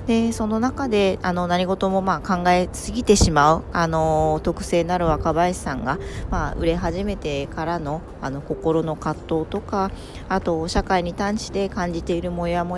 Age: 40-59